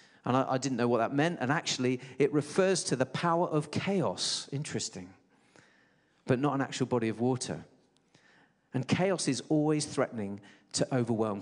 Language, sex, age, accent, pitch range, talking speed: English, male, 40-59, British, 110-135 Hz, 165 wpm